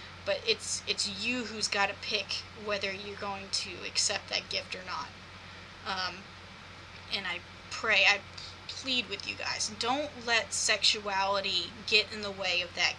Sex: female